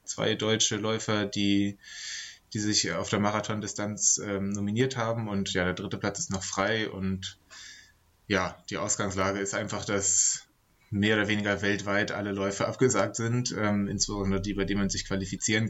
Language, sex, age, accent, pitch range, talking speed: German, male, 20-39, German, 95-110 Hz, 165 wpm